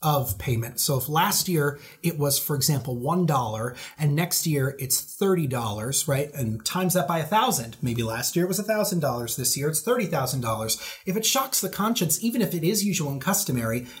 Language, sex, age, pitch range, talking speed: English, male, 30-49, 135-190 Hz, 210 wpm